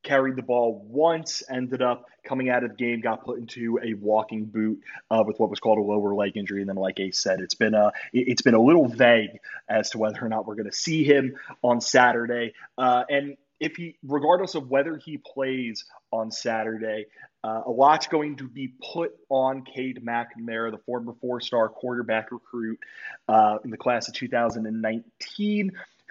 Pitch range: 115-150 Hz